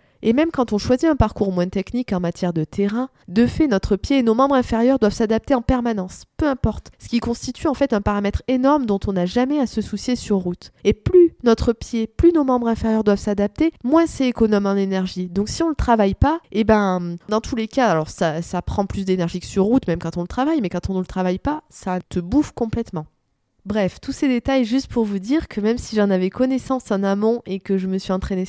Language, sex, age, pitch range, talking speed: French, female, 20-39, 190-245 Hz, 250 wpm